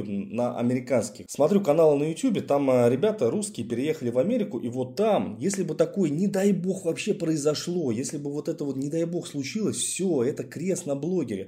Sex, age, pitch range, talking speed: male, 20-39, 120-165 Hz, 200 wpm